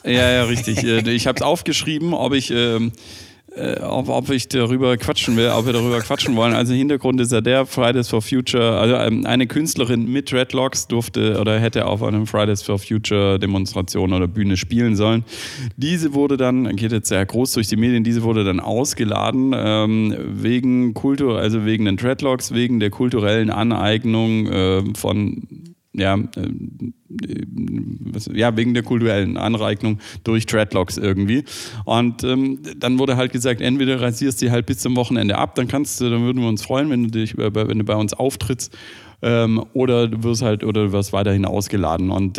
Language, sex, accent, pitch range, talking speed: German, male, German, 105-125 Hz, 180 wpm